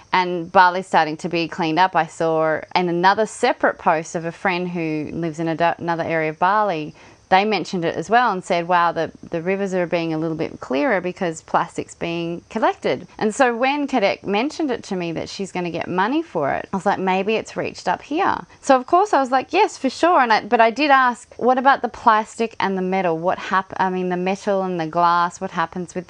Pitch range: 165-215 Hz